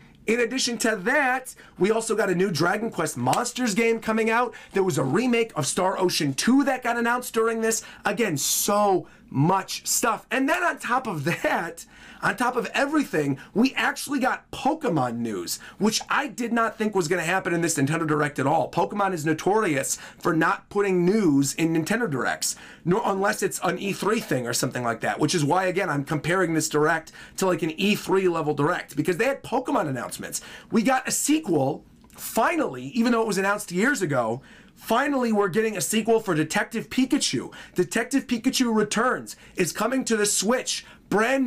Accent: American